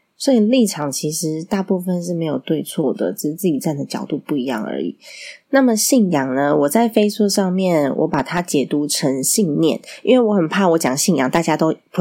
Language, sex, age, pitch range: Chinese, female, 20-39, 155-220 Hz